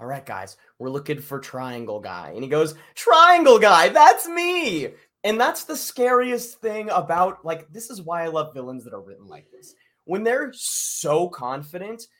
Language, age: English, 20-39